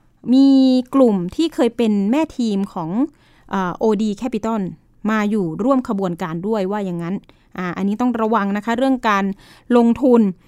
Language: Thai